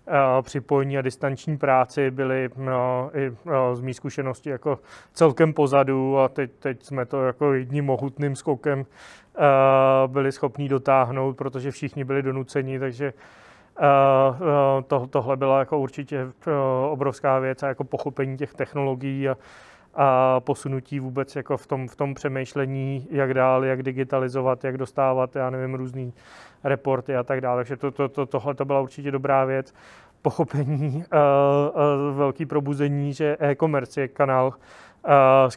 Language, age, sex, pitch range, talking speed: Czech, 30-49, male, 130-140 Hz, 135 wpm